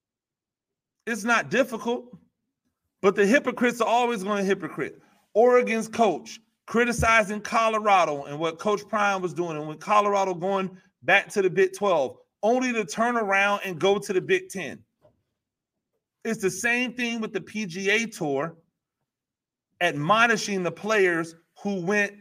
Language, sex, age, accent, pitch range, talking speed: English, male, 30-49, American, 170-220 Hz, 145 wpm